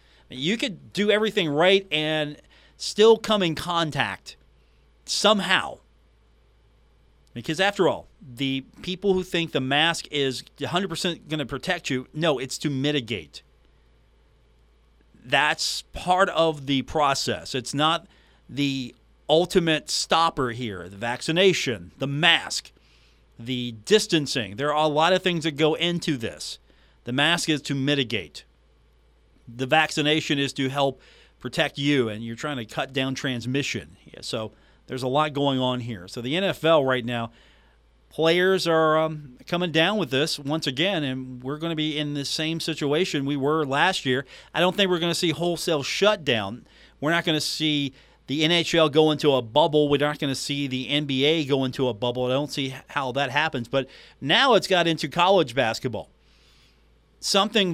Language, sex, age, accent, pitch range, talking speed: English, male, 40-59, American, 125-160 Hz, 160 wpm